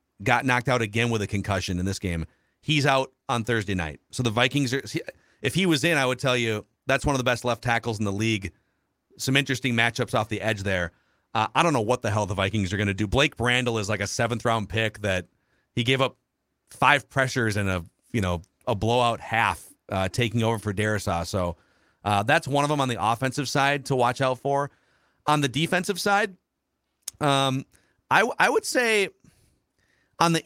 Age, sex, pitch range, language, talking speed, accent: 40-59, male, 110-135 Hz, English, 210 wpm, American